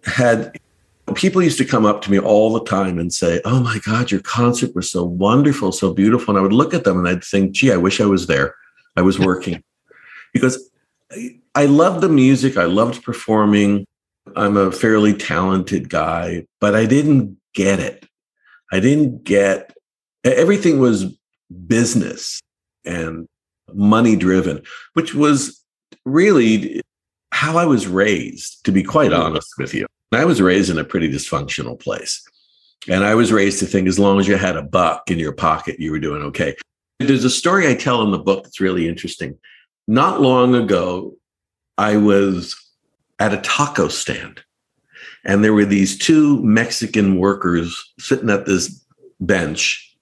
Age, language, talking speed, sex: 50-69, English, 165 wpm, male